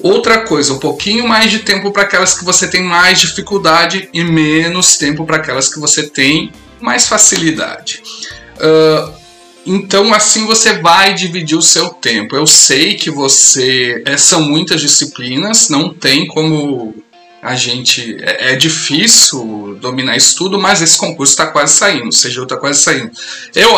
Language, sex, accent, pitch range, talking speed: Portuguese, male, Brazilian, 150-195 Hz, 155 wpm